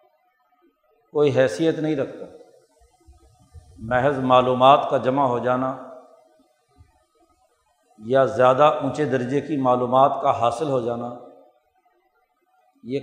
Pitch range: 135-225 Hz